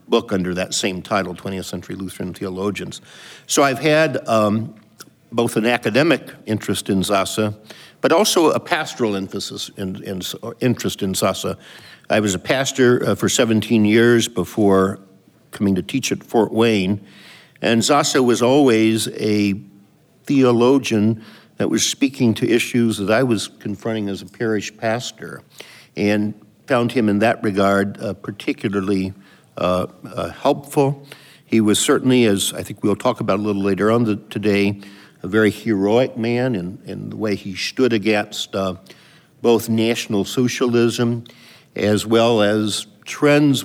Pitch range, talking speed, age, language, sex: 100-120 Hz, 150 wpm, 50-69, English, male